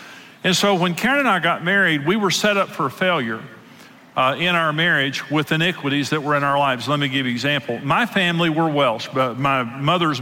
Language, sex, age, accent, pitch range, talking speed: English, male, 50-69, American, 140-175 Hz, 225 wpm